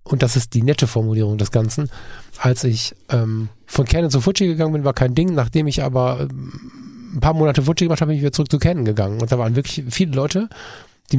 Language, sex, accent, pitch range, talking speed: German, male, German, 115-150 Hz, 235 wpm